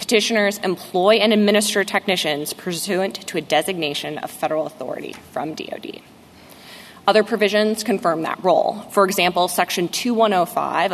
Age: 20-39